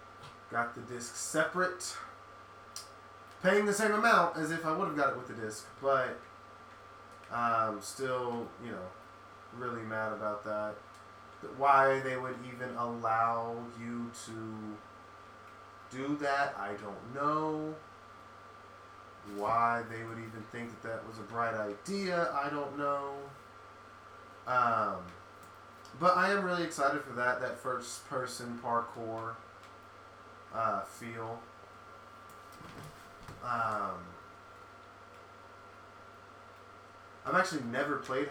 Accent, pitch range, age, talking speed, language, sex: American, 100-130 Hz, 30-49, 115 wpm, English, male